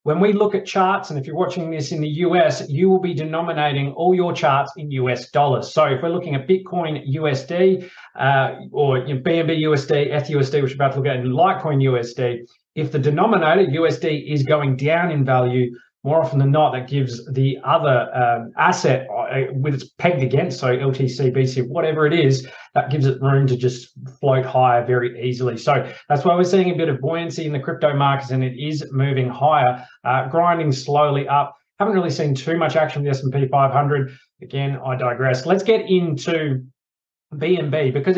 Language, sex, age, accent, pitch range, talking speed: English, male, 30-49, Australian, 130-160 Hz, 195 wpm